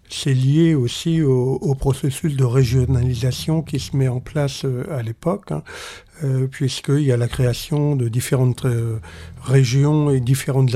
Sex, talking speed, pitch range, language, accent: male, 145 wpm, 125-140 Hz, French, French